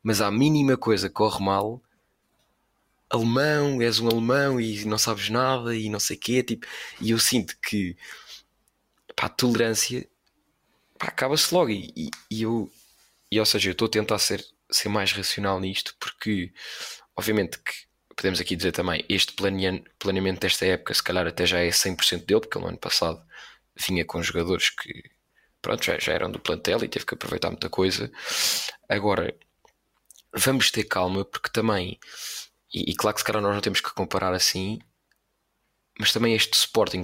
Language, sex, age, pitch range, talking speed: Portuguese, male, 20-39, 95-110 Hz, 170 wpm